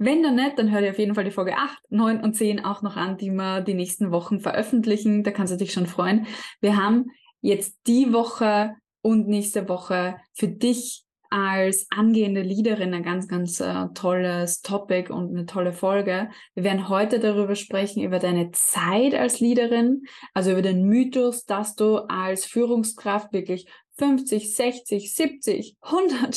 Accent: German